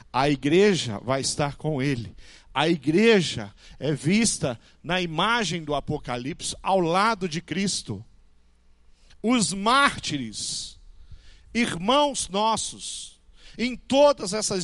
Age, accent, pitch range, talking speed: 40-59, Brazilian, 145-235 Hz, 105 wpm